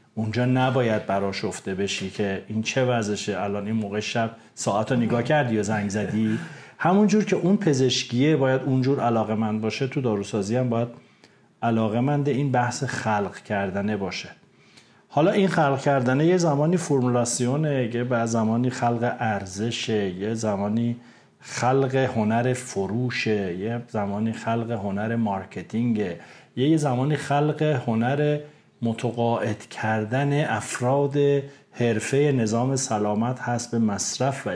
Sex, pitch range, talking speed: male, 105-130 Hz, 130 wpm